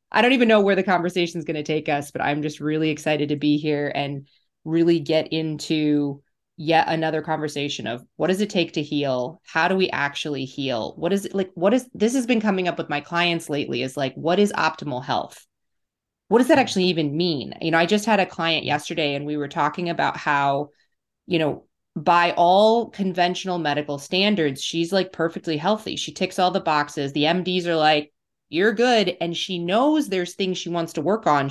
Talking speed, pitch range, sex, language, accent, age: 215 wpm, 150-185 Hz, female, English, American, 20-39